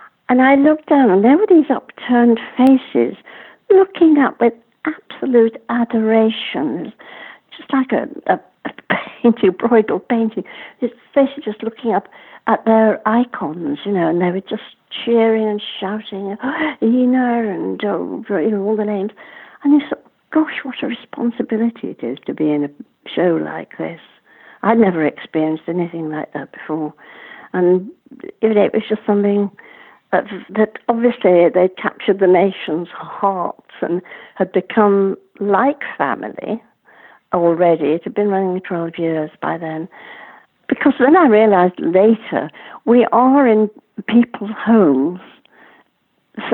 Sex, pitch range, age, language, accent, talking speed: female, 175-245 Hz, 60-79, English, British, 145 wpm